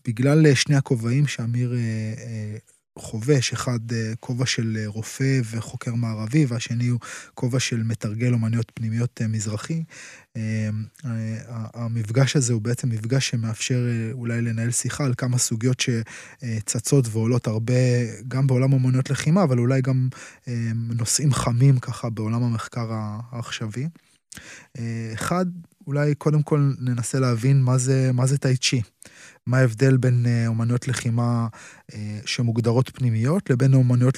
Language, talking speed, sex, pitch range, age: Hebrew, 135 wpm, male, 115-135 Hz, 20-39